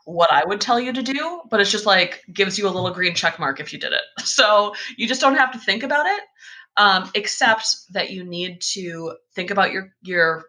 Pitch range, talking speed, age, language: 170-215 Hz, 235 wpm, 20-39, English